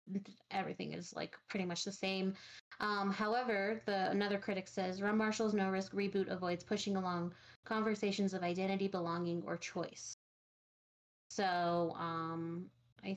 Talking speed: 135 wpm